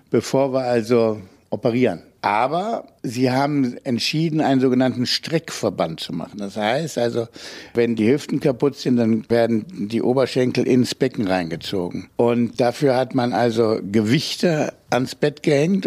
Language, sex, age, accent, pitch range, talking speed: German, male, 60-79, German, 115-150 Hz, 140 wpm